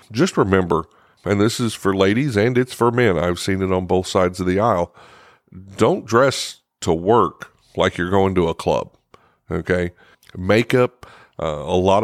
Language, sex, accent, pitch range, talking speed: English, male, American, 90-110 Hz, 175 wpm